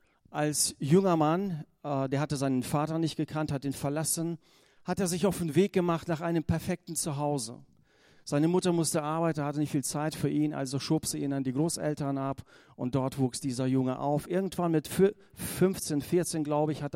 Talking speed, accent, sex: 190 wpm, German, male